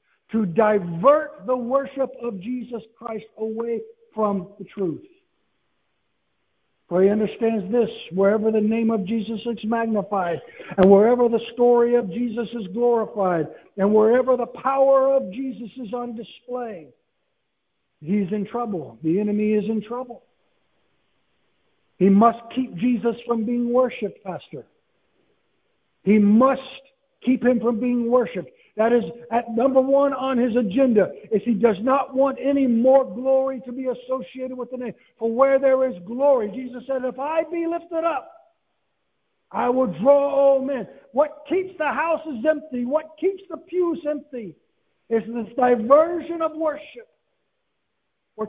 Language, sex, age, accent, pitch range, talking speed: English, male, 60-79, American, 225-280 Hz, 145 wpm